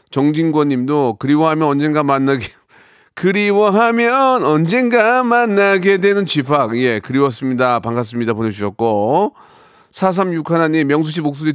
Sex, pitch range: male, 120-160 Hz